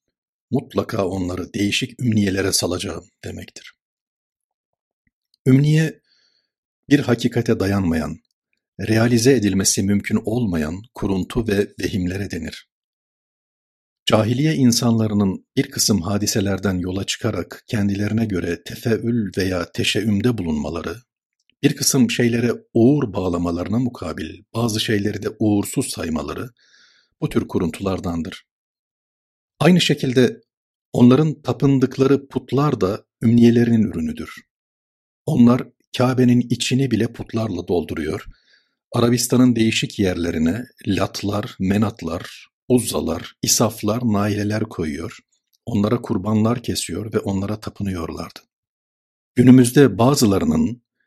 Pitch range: 95-120 Hz